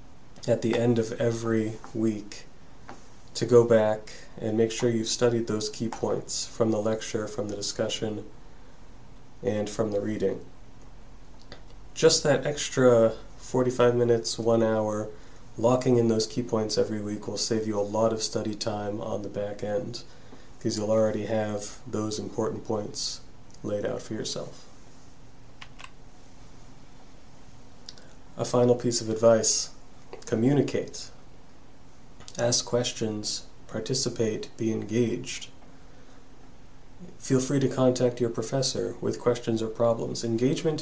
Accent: American